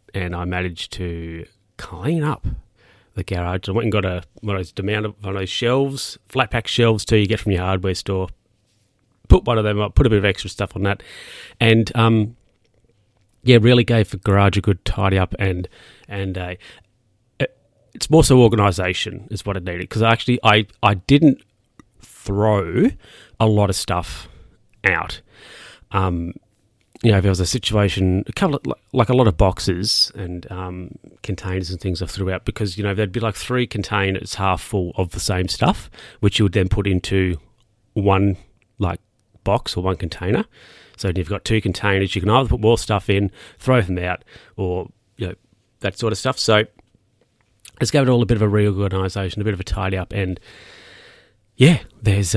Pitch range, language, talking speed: 95-115 Hz, English, 195 wpm